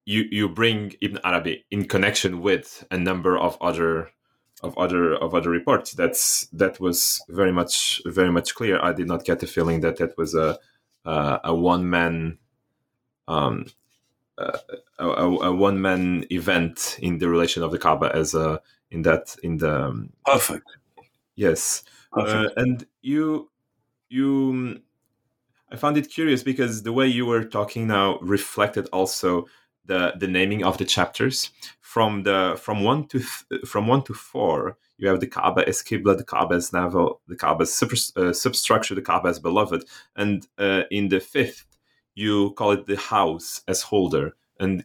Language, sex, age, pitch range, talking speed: English, male, 30-49, 90-115 Hz, 165 wpm